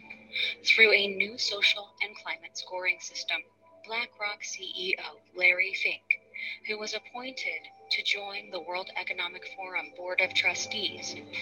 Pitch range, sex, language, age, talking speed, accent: 185-220 Hz, female, English, 30-49, 125 wpm, American